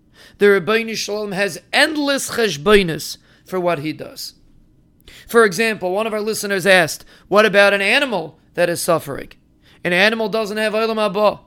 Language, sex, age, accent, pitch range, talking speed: English, male, 30-49, American, 185-225 Hz, 145 wpm